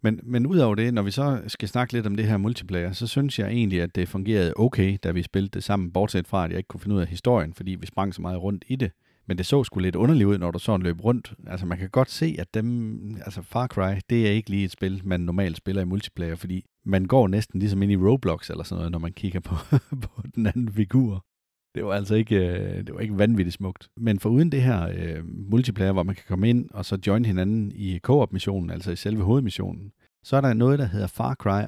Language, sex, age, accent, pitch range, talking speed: English, male, 40-59, Danish, 95-120 Hz, 260 wpm